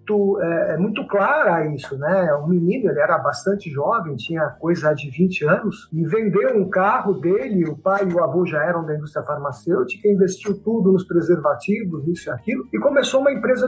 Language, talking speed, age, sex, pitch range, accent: Portuguese, 195 wpm, 50-69, male, 170-220 Hz, Brazilian